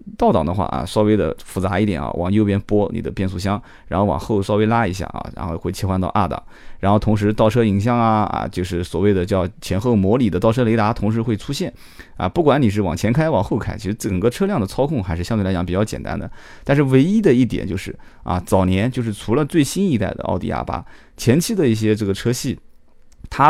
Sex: male